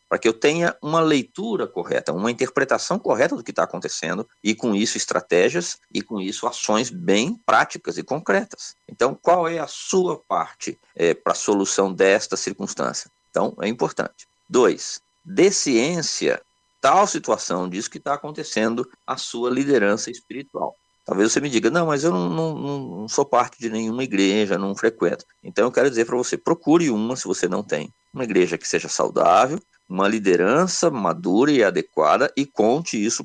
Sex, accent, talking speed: male, Brazilian, 175 wpm